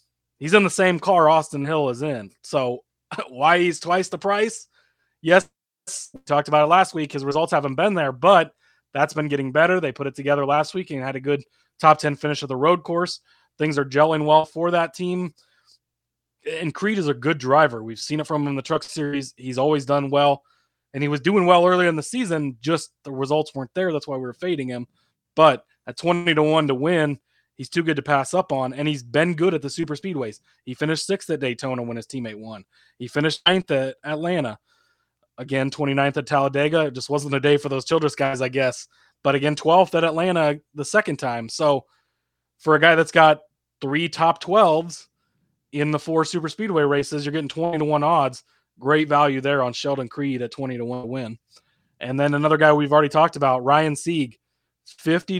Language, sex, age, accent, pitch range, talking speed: English, male, 20-39, American, 135-165 Hz, 215 wpm